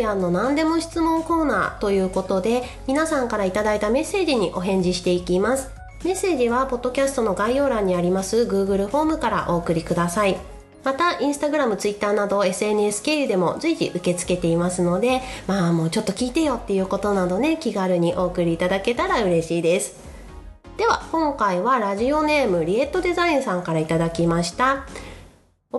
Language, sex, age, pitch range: Japanese, female, 30-49, 180-275 Hz